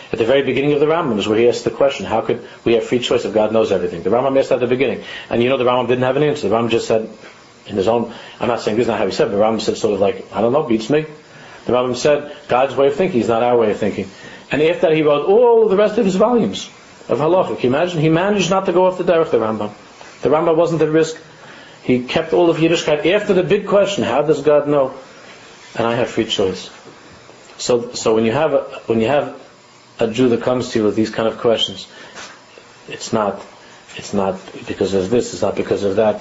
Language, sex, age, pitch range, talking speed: English, male, 40-59, 115-155 Hz, 265 wpm